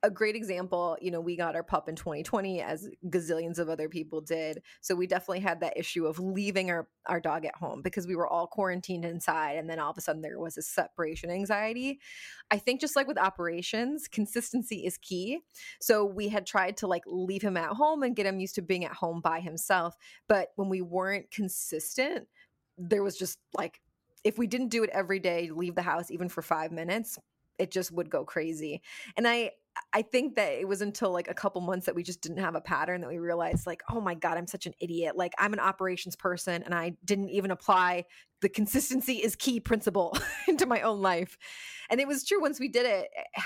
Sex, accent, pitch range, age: female, American, 175-215 Hz, 20-39